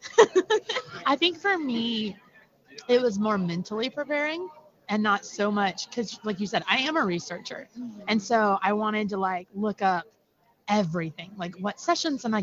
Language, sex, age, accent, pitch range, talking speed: English, female, 30-49, American, 175-215 Hz, 170 wpm